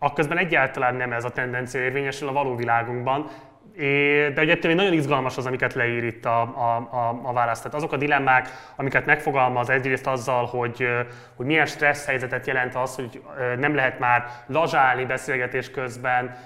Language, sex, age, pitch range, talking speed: Hungarian, male, 20-39, 125-140 Hz, 160 wpm